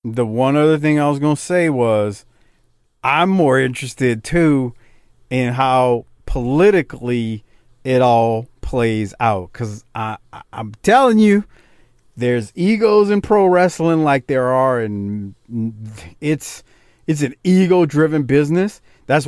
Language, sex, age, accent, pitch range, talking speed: English, male, 40-59, American, 120-165 Hz, 125 wpm